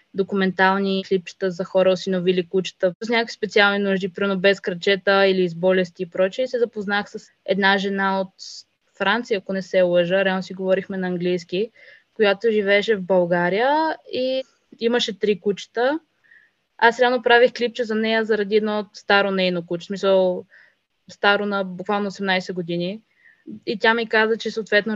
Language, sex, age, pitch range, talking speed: Bulgarian, female, 20-39, 190-220 Hz, 155 wpm